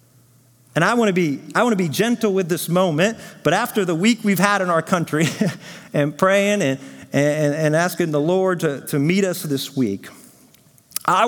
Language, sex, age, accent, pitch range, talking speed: English, male, 40-59, American, 170-230 Hz, 195 wpm